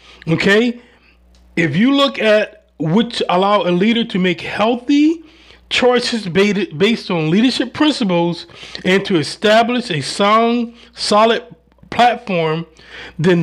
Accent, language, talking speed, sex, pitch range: American, English, 110 wpm, male, 180-230 Hz